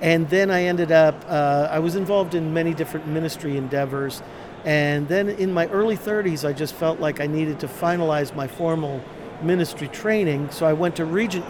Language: English